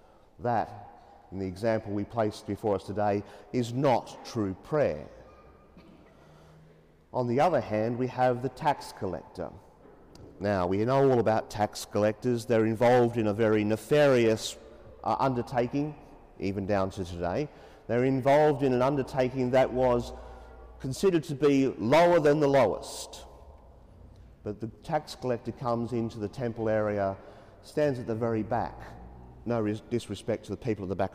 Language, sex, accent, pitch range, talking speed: English, male, Australian, 100-125 Hz, 150 wpm